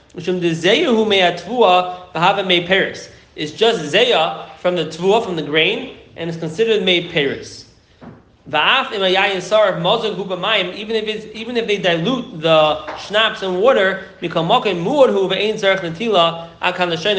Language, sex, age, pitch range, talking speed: English, male, 30-49, 150-190 Hz, 85 wpm